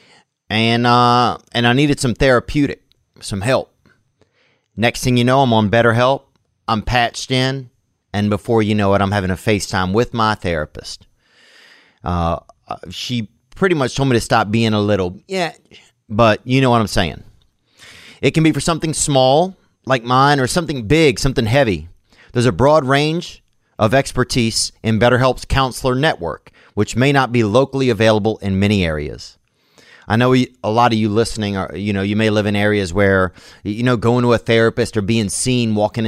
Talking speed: 180 wpm